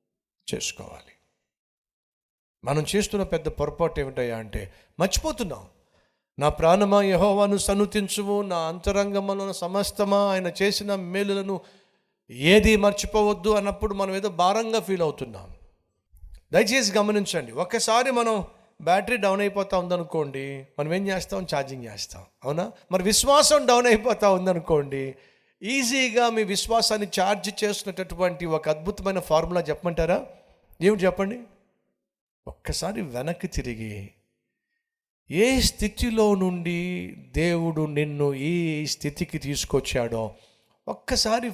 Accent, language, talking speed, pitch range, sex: native, Telugu, 100 wpm, 150-205 Hz, male